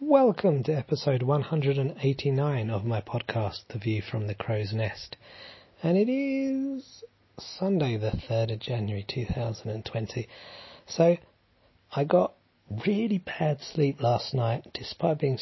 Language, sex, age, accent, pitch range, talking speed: English, male, 30-49, British, 105-140 Hz, 125 wpm